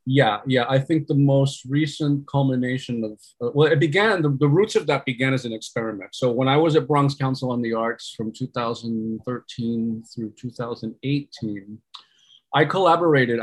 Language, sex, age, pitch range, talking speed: English, male, 30-49, 120-150 Hz, 170 wpm